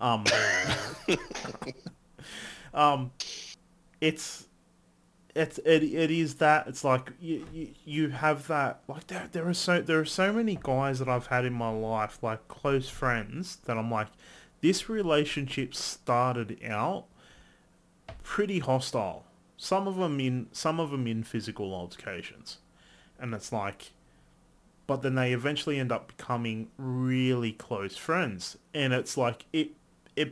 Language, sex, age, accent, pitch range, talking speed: English, male, 30-49, Australian, 110-150 Hz, 140 wpm